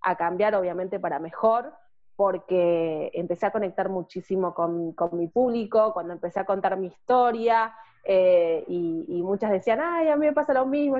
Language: Spanish